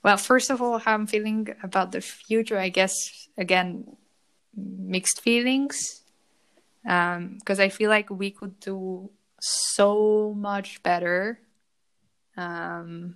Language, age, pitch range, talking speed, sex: English, 20-39, 175-205 Hz, 125 wpm, female